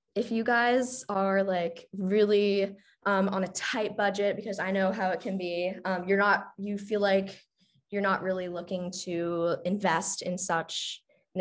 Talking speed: 175 wpm